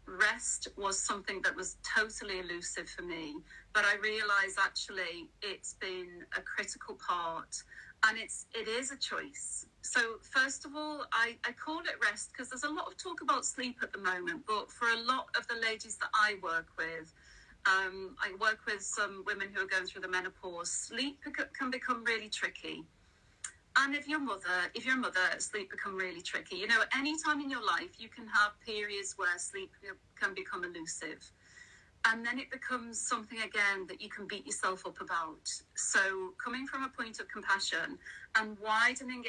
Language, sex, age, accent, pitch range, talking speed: English, female, 40-59, British, 200-270 Hz, 185 wpm